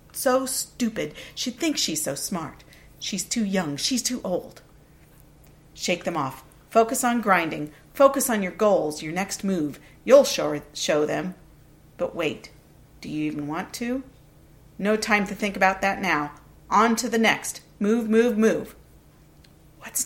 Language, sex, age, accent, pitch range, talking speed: English, female, 50-69, American, 165-230 Hz, 155 wpm